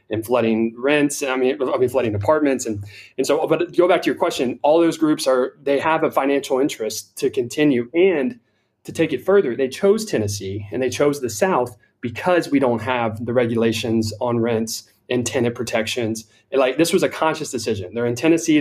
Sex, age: male, 30-49